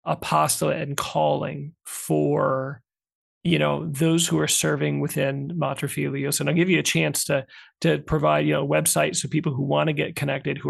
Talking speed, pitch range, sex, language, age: 185 wpm, 130-170 Hz, male, English, 40-59